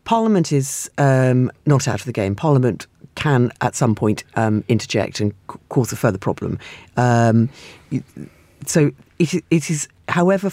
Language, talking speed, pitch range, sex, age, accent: English, 155 wpm, 115-145 Hz, female, 40-59, British